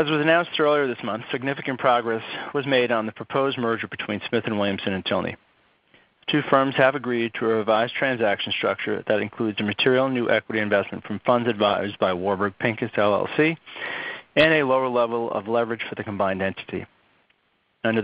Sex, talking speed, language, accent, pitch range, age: male, 180 wpm, English, American, 105-130 Hz, 40-59